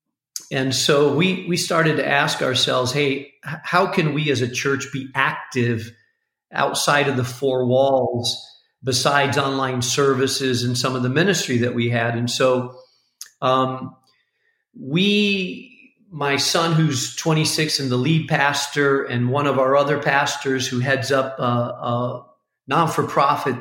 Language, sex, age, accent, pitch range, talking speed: English, male, 40-59, American, 130-160 Hz, 145 wpm